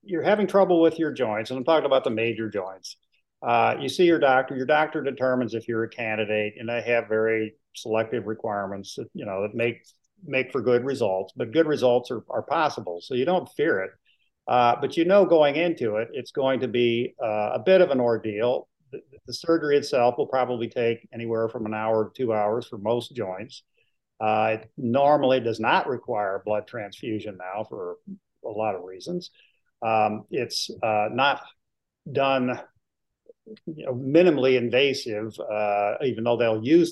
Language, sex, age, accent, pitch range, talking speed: English, male, 50-69, American, 115-145 Hz, 185 wpm